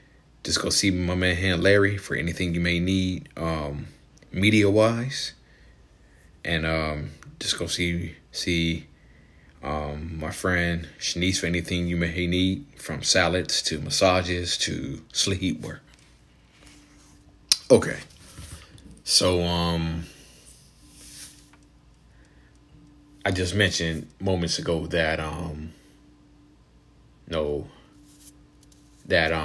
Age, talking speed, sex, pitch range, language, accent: 30-49, 100 wpm, male, 75-90 Hz, English, American